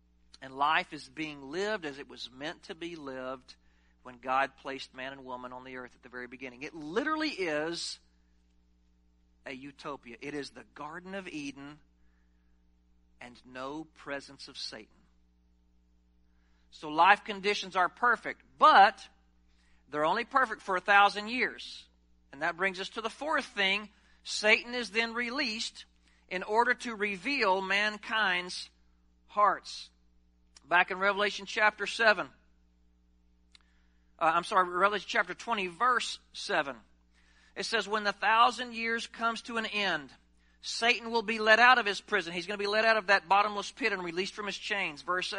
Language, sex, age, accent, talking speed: English, male, 40-59, American, 155 wpm